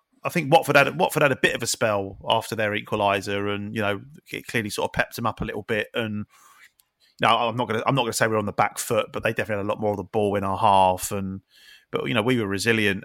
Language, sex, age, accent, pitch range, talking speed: English, male, 30-49, British, 100-120 Hz, 295 wpm